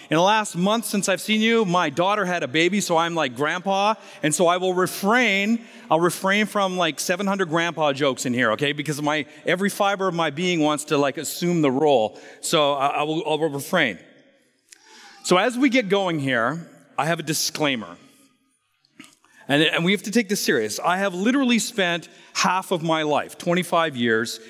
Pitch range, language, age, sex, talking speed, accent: 155-205 Hz, English, 40-59, male, 195 wpm, American